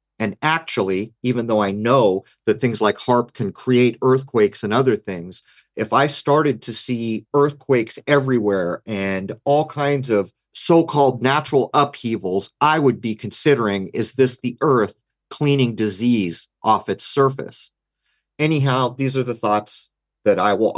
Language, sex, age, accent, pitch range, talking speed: English, male, 40-59, American, 105-135 Hz, 145 wpm